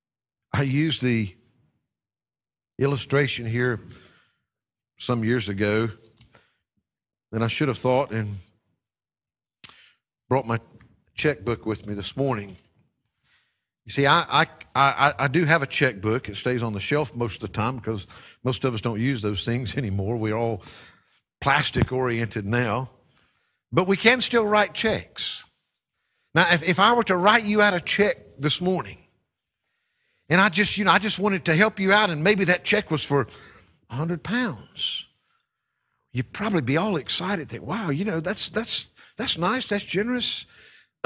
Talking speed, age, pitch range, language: 155 wpm, 50-69, 115-180 Hz, English